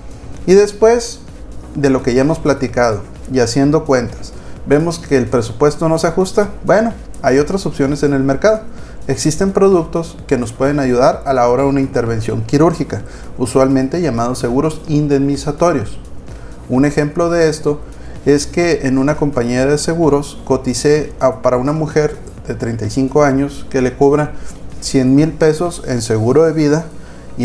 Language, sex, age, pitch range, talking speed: Spanish, male, 30-49, 125-155 Hz, 155 wpm